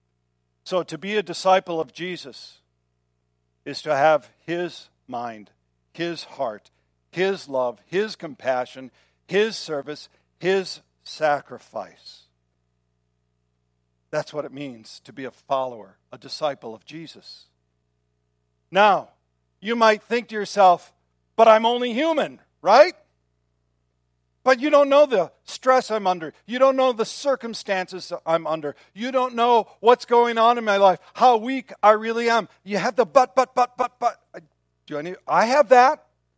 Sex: male